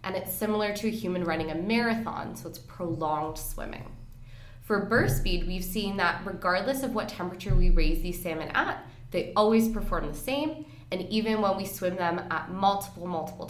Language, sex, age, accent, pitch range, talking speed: English, female, 20-39, American, 160-205 Hz, 185 wpm